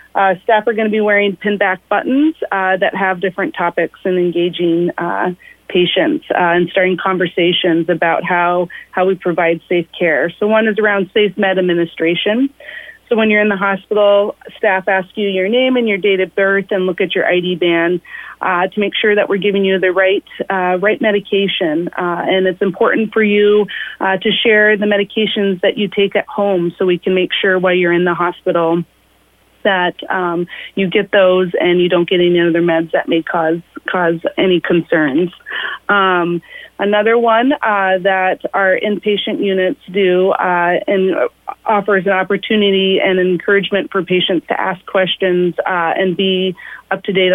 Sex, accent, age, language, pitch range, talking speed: female, American, 30-49, English, 180-205 Hz, 180 wpm